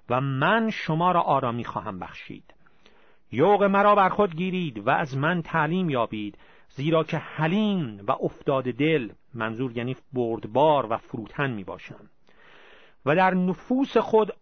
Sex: male